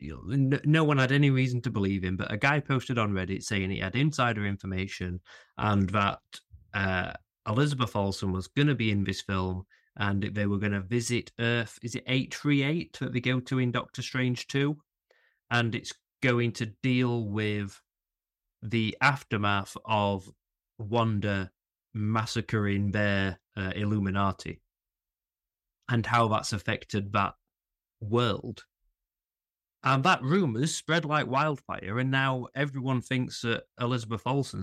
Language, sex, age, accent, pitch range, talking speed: English, male, 30-49, British, 100-125 Hz, 145 wpm